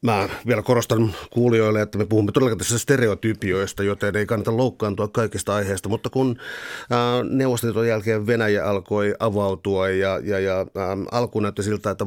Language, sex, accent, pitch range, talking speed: Finnish, male, native, 100-110 Hz, 160 wpm